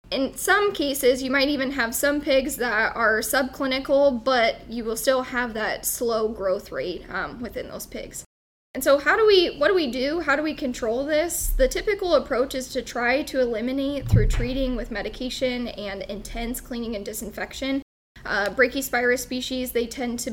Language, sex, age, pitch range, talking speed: English, female, 10-29, 230-280 Hz, 185 wpm